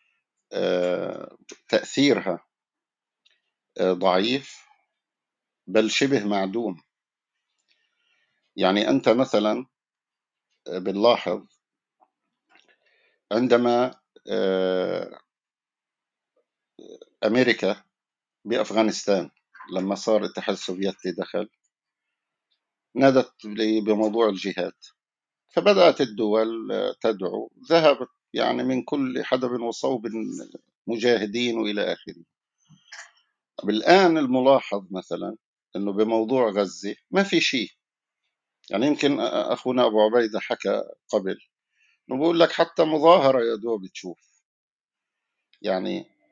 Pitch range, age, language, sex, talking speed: 105-160 Hz, 50-69, Arabic, male, 75 wpm